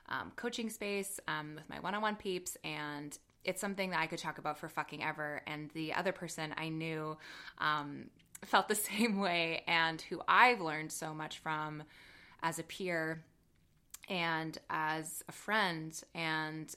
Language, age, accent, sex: English, 20-39, American, female